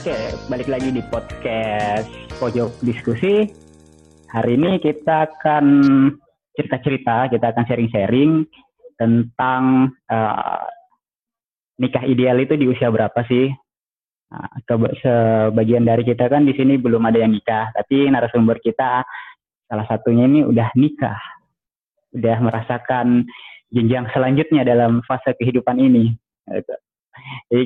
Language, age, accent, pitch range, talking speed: Indonesian, 20-39, native, 120-140 Hz, 115 wpm